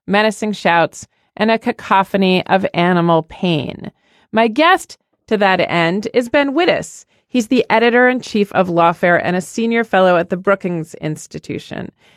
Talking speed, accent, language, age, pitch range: 145 wpm, American, English, 40-59, 190-265 Hz